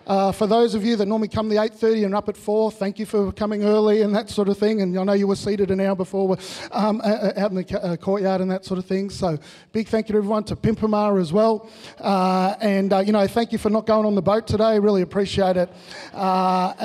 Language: English